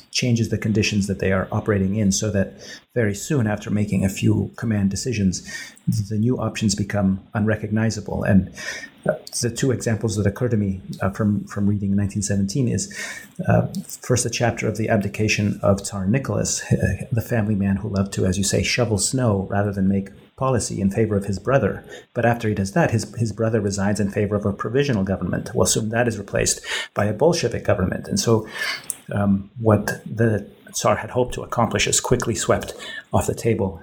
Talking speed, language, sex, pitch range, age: 190 wpm, English, male, 100-115 Hz, 30-49